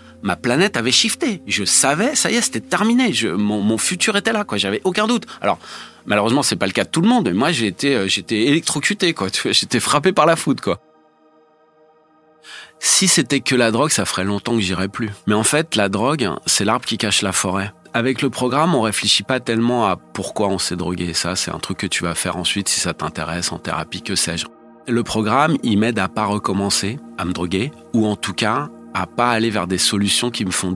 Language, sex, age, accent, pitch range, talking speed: French, male, 30-49, French, 95-130 Hz, 230 wpm